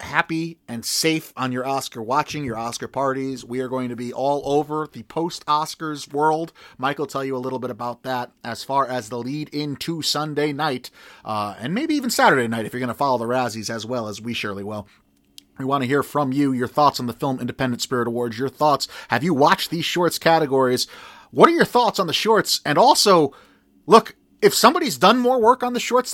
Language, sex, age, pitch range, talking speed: English, male, 30-49, 115-150 Hz, 225 wpm